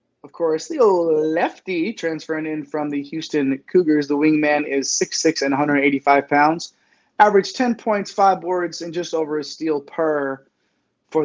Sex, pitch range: male, 145-185 Hz